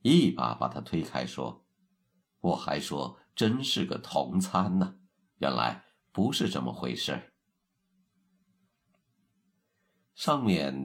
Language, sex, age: Chinese, male, 50-69